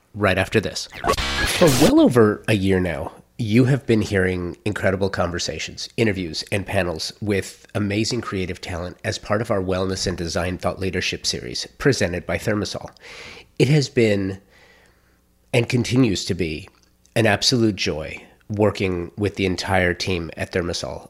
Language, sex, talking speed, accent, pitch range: English, male, 150 wpm, American, 90-105 Hz